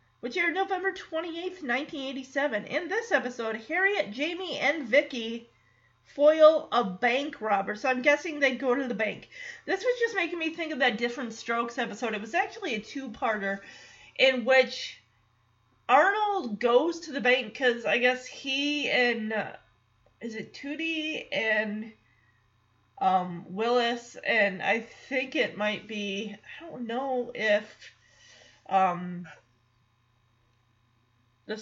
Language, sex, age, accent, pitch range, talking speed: English, female, 30-49, American, 200-280 Hz, 135 wpm